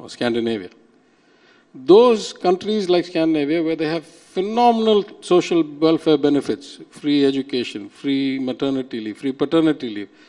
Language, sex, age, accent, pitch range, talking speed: English, male, 50-69, Indian, 135-205 Hz, 115 wpm